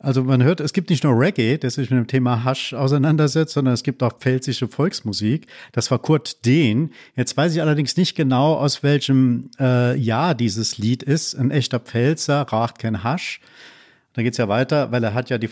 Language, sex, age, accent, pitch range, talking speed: German, male, 50-69, German, 125-155 Hz, 210 wpm